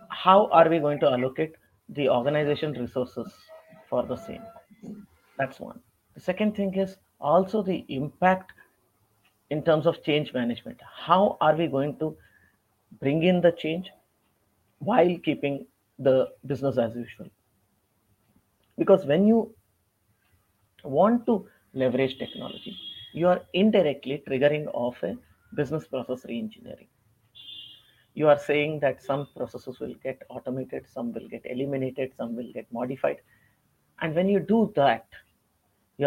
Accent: Indian